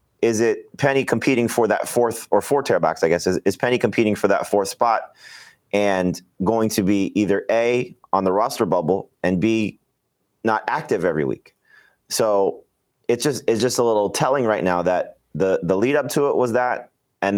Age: 30-49